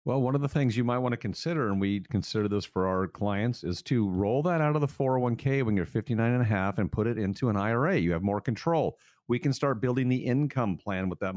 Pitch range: 105-130 Hz